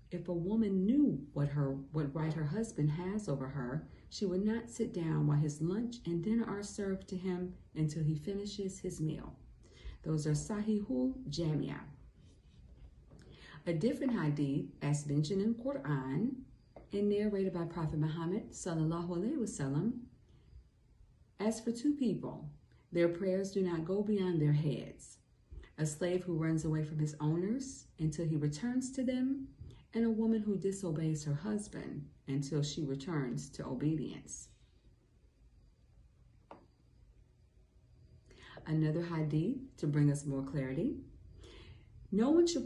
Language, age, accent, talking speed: English, 40-59, American, 140 wpm